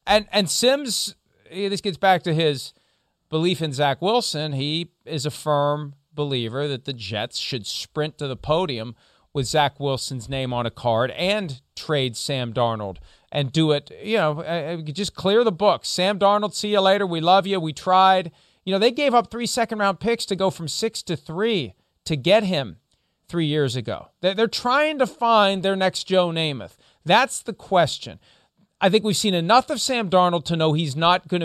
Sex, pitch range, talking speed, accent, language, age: male, 145-200 Hz, 190 wpm, American, English, 40-59